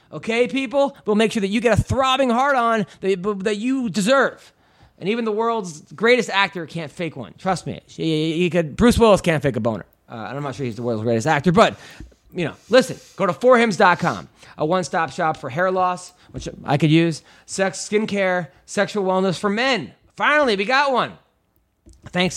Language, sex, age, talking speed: English, male, 30-49, 190 wpm